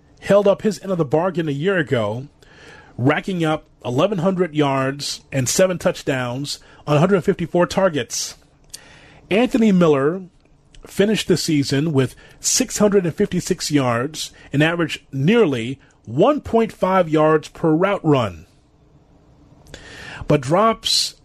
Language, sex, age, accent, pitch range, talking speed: English, male, 30-49, American, 140-190 Hz, 105 wpm